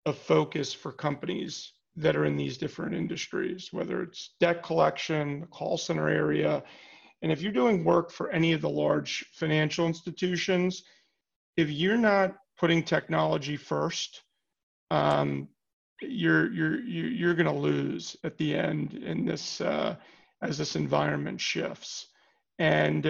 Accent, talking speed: American, 140 wpm